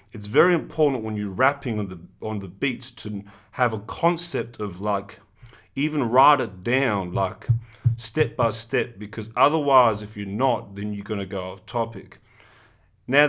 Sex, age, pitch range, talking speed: male, 30-49, 100-125 Hz, 170 wpm